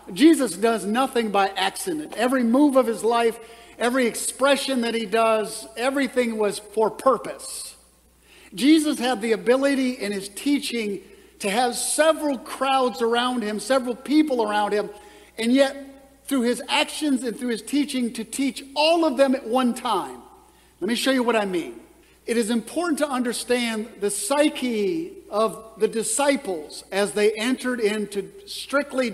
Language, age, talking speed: English, 50-69, 155 wpm